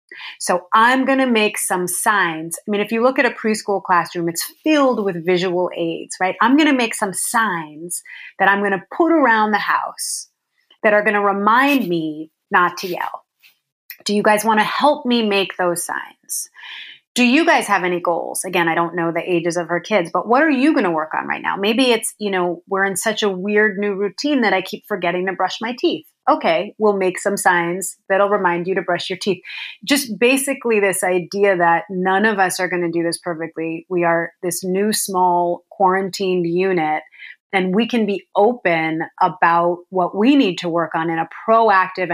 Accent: American